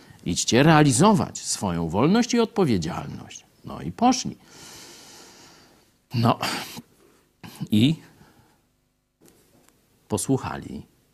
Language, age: Polish, 50-69